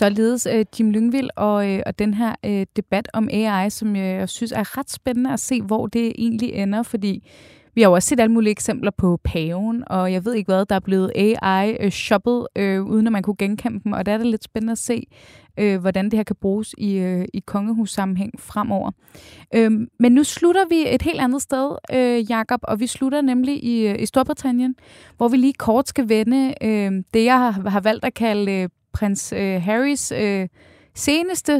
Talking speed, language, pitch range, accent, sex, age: 200 wpm, Danish, 200-245 Hz, native, female, 20-39